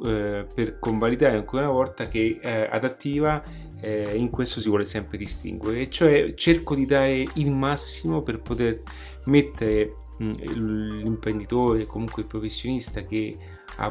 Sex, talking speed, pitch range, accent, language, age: male, 135 wpm, 105-125 Hz, native, Italian, 30-49